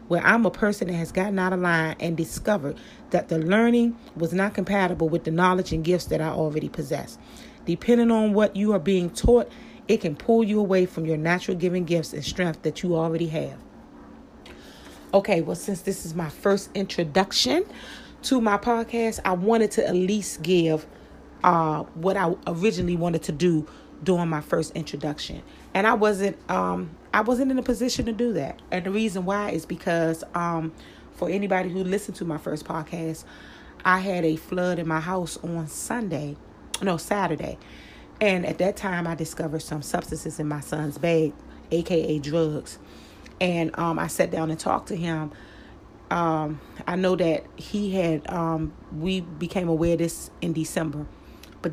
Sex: female